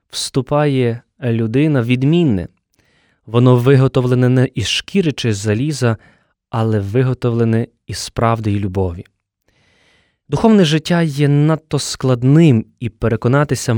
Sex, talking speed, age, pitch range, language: male, 95 wpm, 20-39, 120-150 Hz, Ukrainian